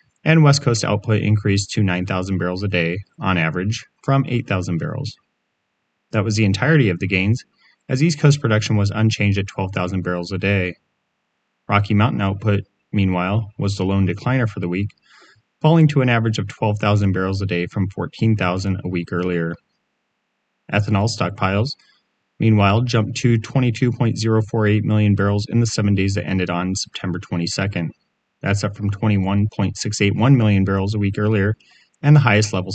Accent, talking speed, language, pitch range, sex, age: American, 160 wpm, English, 95-110 Hz, male, 30-49